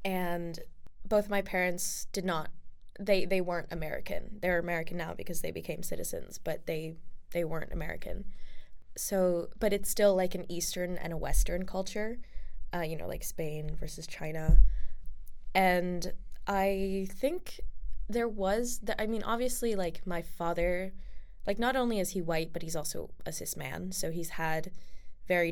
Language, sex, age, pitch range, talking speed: English, female, 20-39, 165-205 Hz, 160 wpm